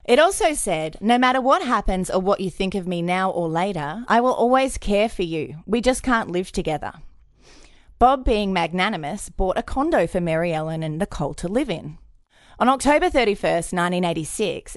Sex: female